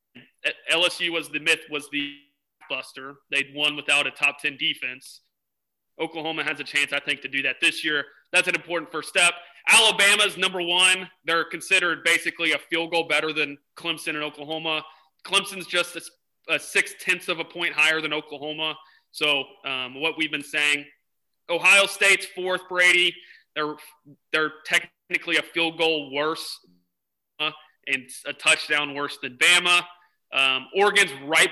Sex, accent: male, American